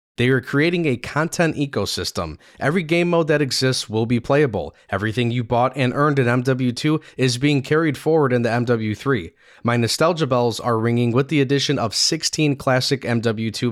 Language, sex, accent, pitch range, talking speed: English, male, American, 115-150 Hz, 175 wpm